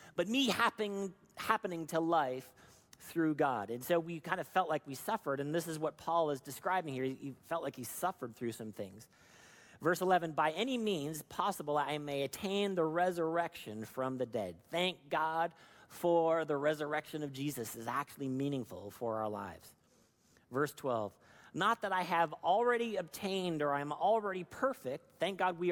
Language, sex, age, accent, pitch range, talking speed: English, male, 40-59, American, 145-185 Hz, 175 wpm